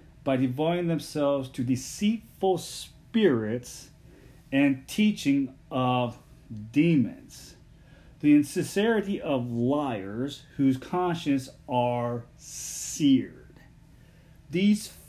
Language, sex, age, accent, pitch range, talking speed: English, male, 40-59, American, 125-170 Hz, 75 wpm